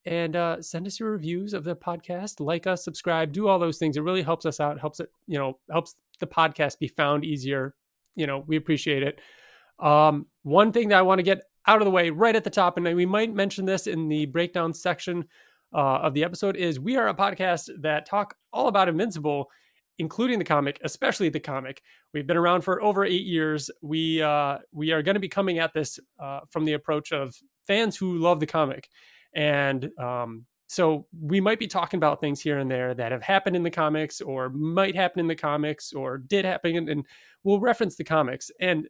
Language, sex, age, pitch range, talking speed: English, male, 30-49, 145-180 Hz, 220 wpm